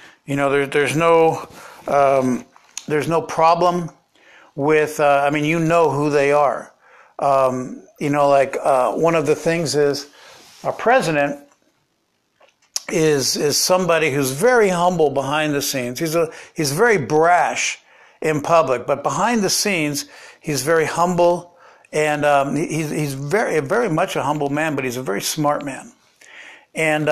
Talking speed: 150 wpm